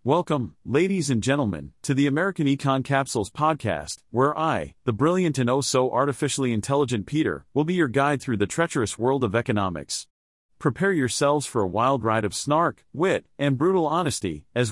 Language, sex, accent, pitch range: English, male, American, 115-150 Hz